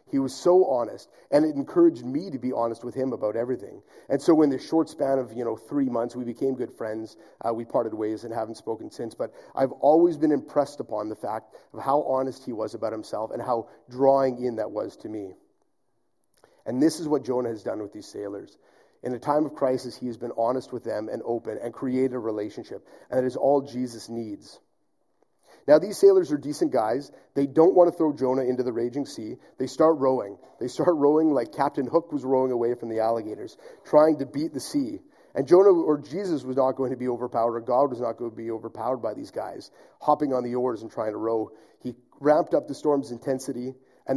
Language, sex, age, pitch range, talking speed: English, male, 30-49, 120-150 Hz, 225 wpm